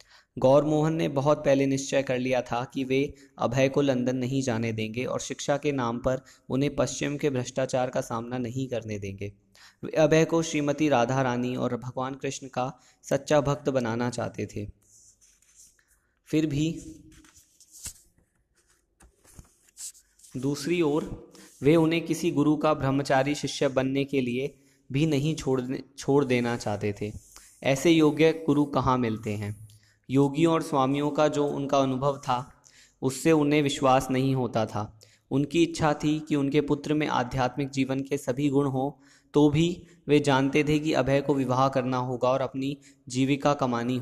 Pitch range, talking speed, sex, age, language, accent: 125-145 Hz, 155 wpm, male, 20-39, Hindi, native